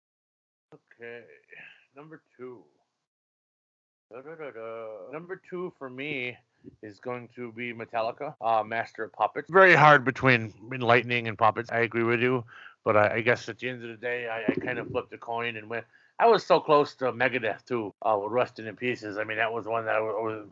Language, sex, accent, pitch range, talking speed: English, male, American, 115-130 Hz, 205 wpm